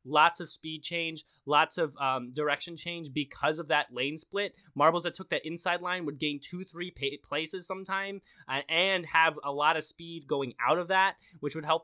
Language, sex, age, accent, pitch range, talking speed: English, male, 20-39, American, 155-205 Hz, 205 wpm